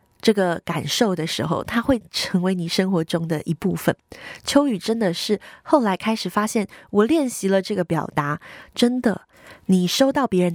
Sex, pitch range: female, 170-235 Hz